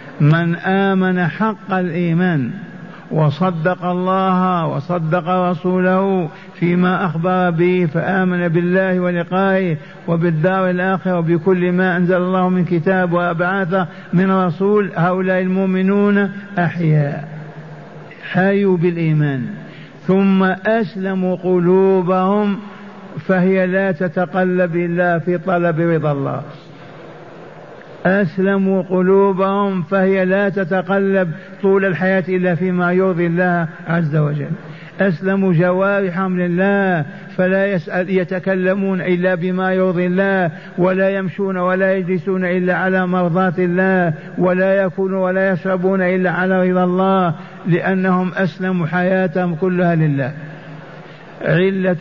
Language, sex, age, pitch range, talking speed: Arabic, male, 50-69, 175-190 Hz, 100 wpm